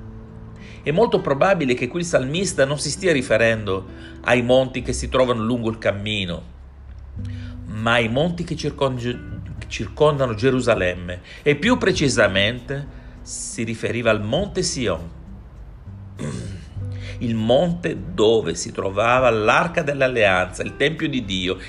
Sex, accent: male, native